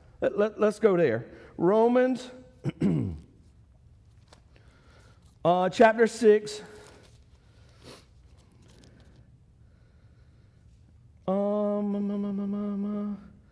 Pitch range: 190-215 Hz